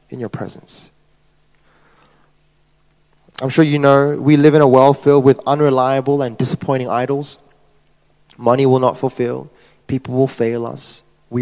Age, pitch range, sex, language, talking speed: 20-39, 135-160 Hz, male, English, 140 wpm